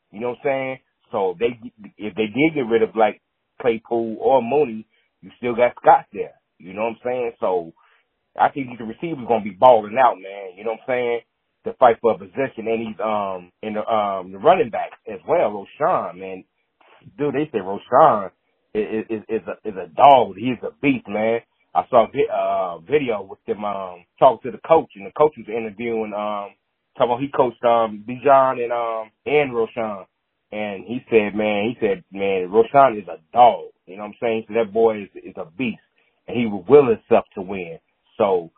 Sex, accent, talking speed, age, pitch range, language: male, American, 205 wpm, 30-49, 110-140 Hz, English